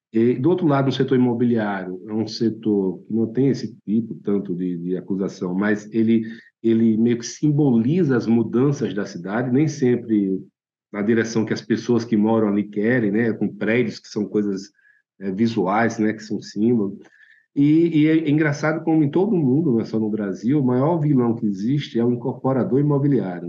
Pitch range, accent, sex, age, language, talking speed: 105-135 Hz, Brazilian, male, 50-69, Portuguese, 190 wpm